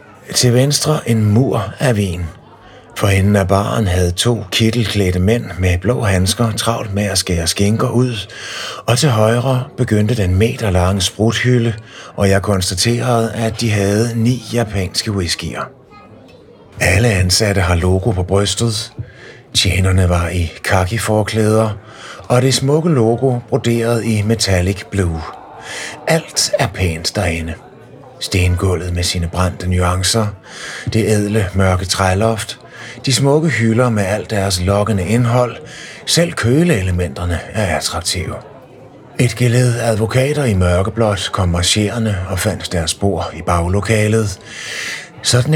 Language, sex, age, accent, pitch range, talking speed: Danish, male, 30-49, native, 95-120 Hz, 125 wpm